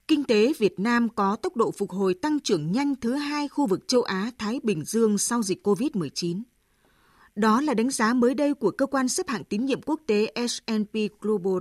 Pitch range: 190-245 Hz